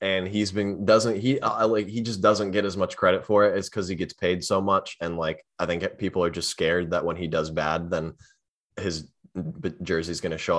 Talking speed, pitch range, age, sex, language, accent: 230 wpm, 85-105 Hz, 20-39, male, English, American